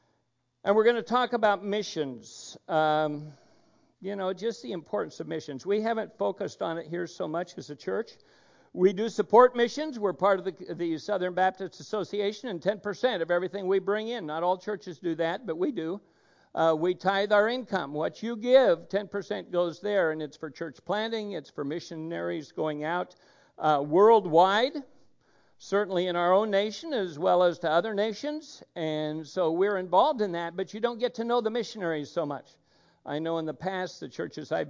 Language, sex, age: English, male, 60-79